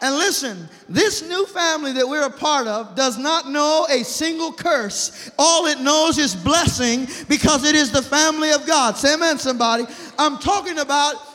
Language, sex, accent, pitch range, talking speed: English, male, American, 235-285 Hz, 180 wpm